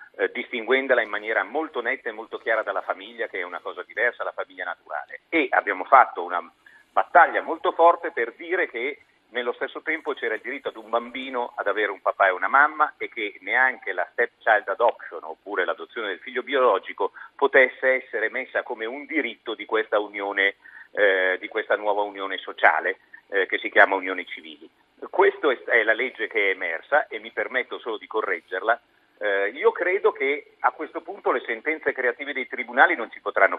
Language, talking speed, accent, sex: Italian, 190 wpm, native, male